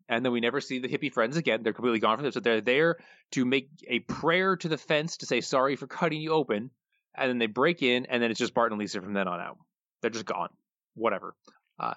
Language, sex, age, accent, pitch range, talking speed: English, male, 20-39, American, 105-135 Hz, 260 wpm